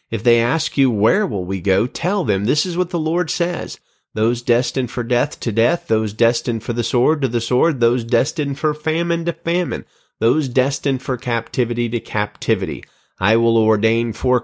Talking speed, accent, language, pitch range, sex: 190 wpm, American, English, 105-135 Hz, male